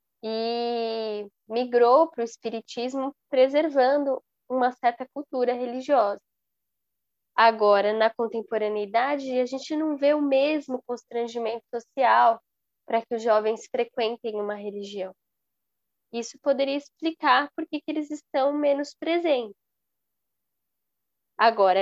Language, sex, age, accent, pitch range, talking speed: Portuguese, female, 10-29, Brazilian, 210-260 Hz, 105 wpm